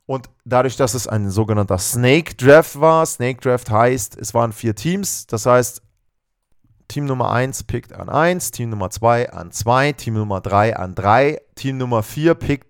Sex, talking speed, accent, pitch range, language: male, 180 wpm, German, 115-145 Hz, German